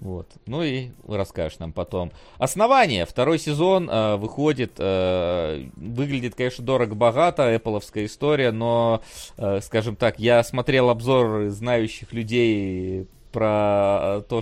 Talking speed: 115 wpm